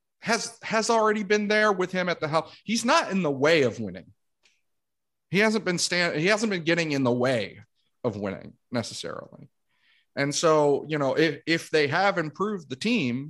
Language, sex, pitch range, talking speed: English, male, 110-165 Hz, 190 wpm